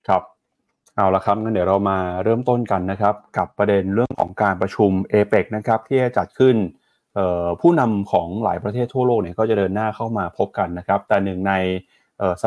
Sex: male